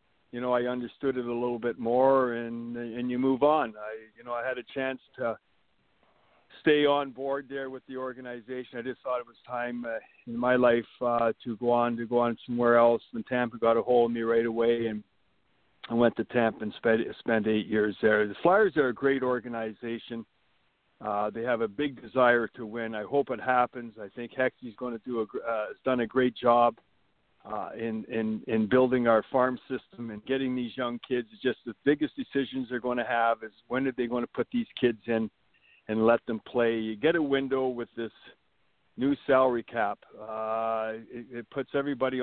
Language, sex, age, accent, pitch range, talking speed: English, male, 60-79, American, 115-130 Hz, 210 wpm